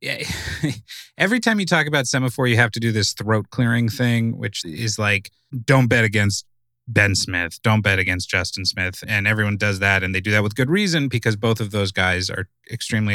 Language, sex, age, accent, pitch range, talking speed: English, male, 30-49, American, 105-135 Hz, 205 wpm